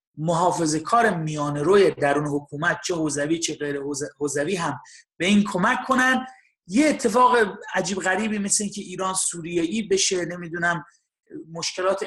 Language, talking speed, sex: English, 135 wpm, male